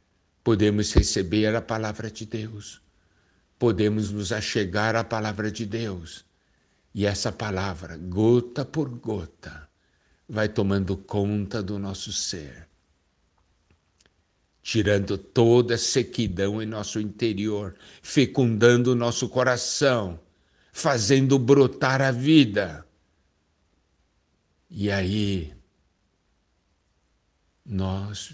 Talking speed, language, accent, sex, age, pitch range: 90 wpm, Portuguese, Brazilian, male, 60-79, 80-110 Hz